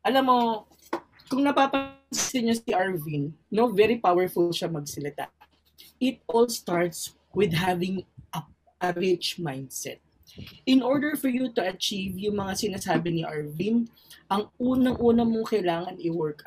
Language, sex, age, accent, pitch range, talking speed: Filipino, female, 20-39, native, 165-230 Hz, 135 wpm